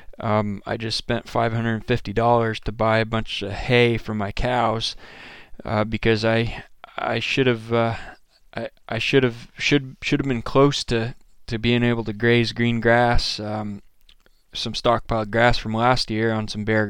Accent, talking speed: American, 190 wpm